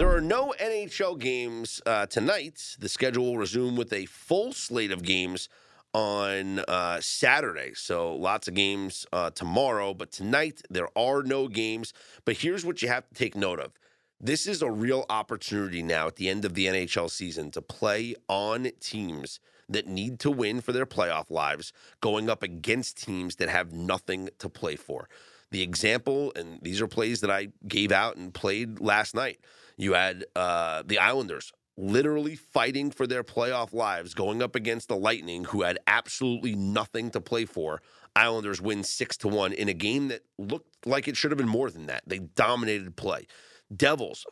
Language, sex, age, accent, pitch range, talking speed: English, male, 30-49, American, 100-140 Hz, 180 wpm